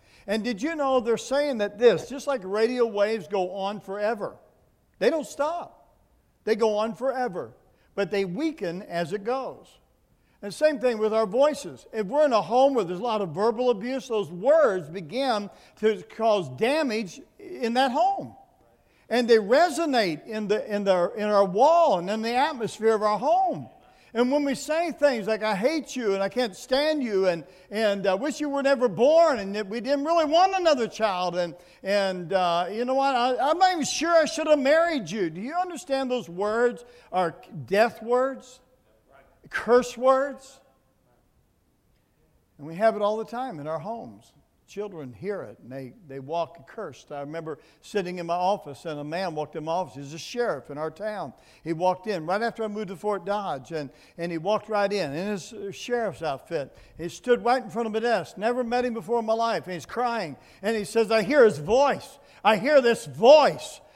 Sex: male